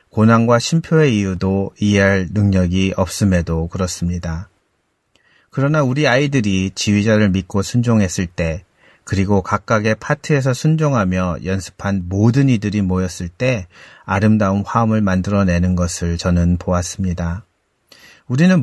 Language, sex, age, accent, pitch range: Korean, male, 40-59, native, 90-115 Hz